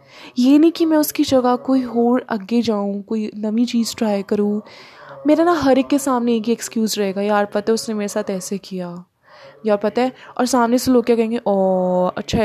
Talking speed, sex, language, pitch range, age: 210 wpm, female, Hindi, 205-255 Hz, 10-29